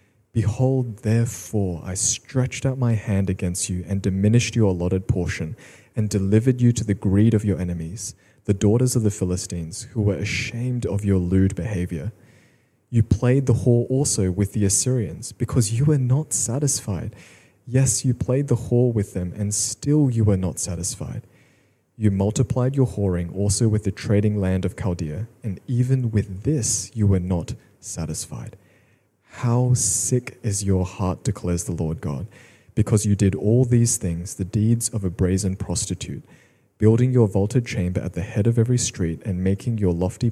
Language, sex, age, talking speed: English, male, 20-39, 170 wpm